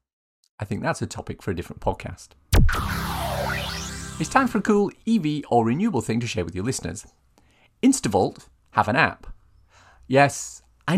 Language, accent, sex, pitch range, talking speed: English, British, male, 95-135 Hz, 160 wpm